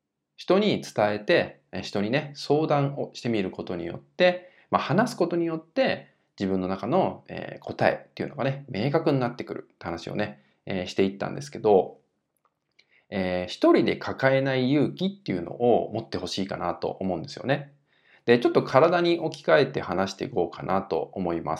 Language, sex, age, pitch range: Japanese, male, 20-39, 95-150 Hz